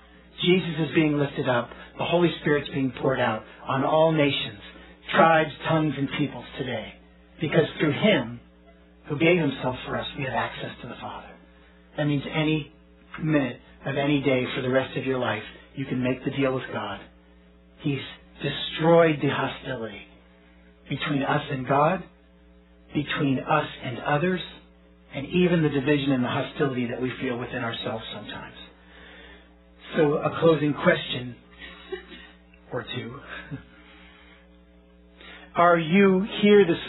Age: 40-59